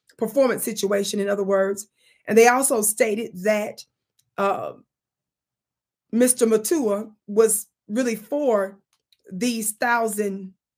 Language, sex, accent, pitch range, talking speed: English, female, American, 210-240 Hz, 100 wpm